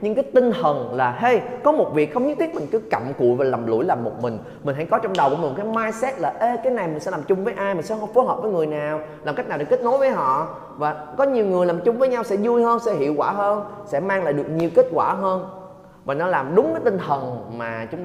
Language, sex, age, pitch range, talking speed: Vietnamese, male, 20-39, 135-205 Hz, 300 wpm